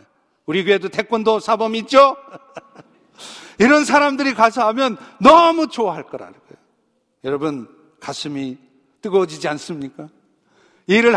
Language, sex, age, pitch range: Korean, male, 50-69, 170-255 Hz